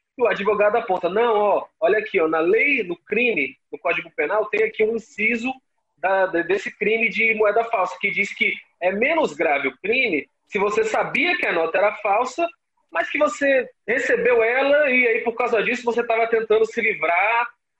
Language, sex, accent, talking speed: Portuguese, male, Brazilian, 190 wpm